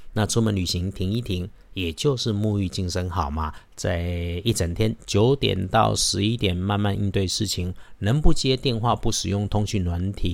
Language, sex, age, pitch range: Chinese, male, 50-69, 90-120 Hz